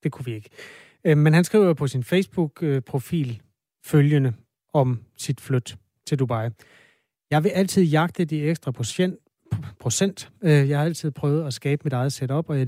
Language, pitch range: Danish, 125-155 Hz